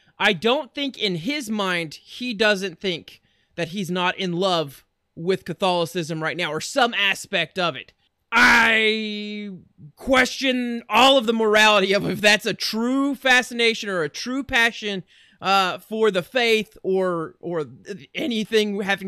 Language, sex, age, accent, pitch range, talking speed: English, male, 30-49, American, 190-255 Hz, 150 wpm